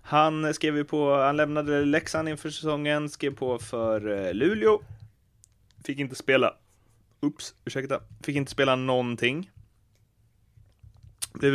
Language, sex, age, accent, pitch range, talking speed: Swedish, male, 30-49, native, 110-140 Hz, 115 wpm